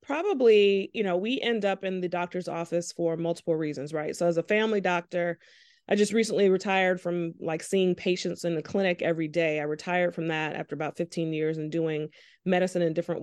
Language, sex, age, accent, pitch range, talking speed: English, female, 30-49, American, 165-195 Hz, 205 wpm